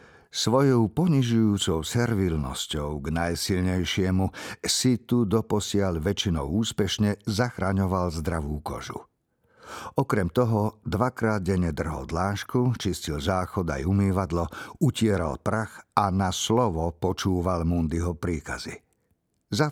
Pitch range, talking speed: 85-115 Hz, 95 wpm